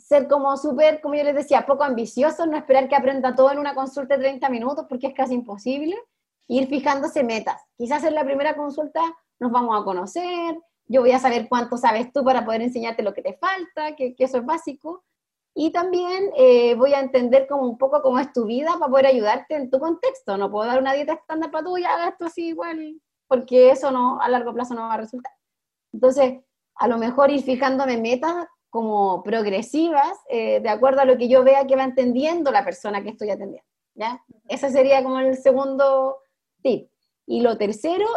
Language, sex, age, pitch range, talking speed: Romanian, female, 30-49, 255-300 Hz, 210 wpm